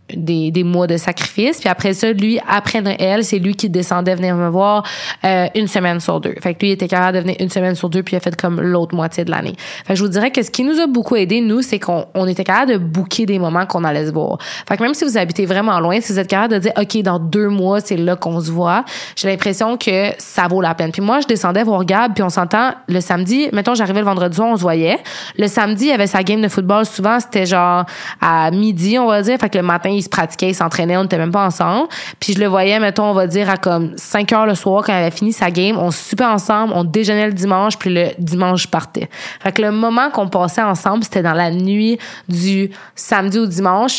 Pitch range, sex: 180-215 Hz, female